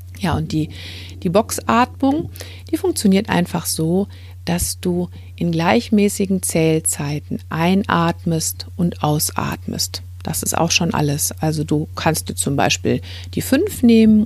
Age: 50-69